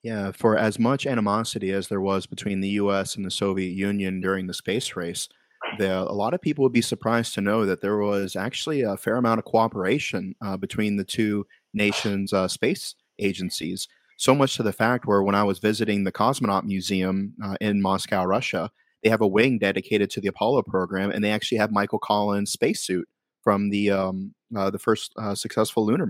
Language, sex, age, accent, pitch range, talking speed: English, male, 30-49, American, 100-110 Hz, 200 wpm